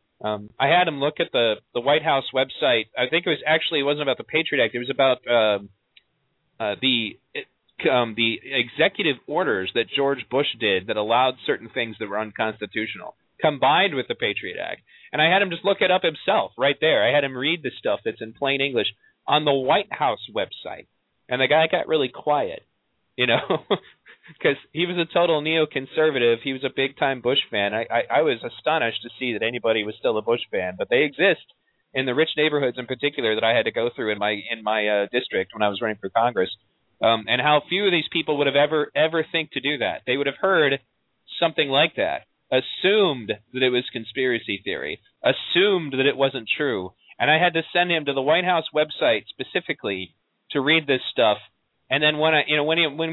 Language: English